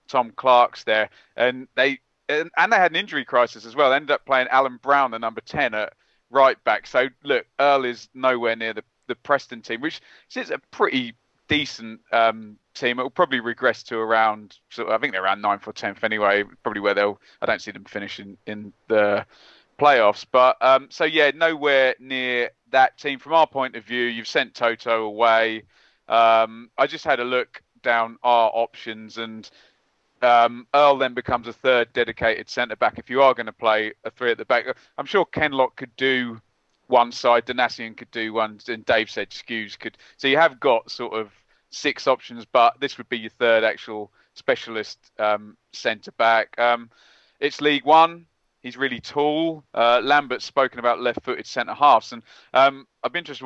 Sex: male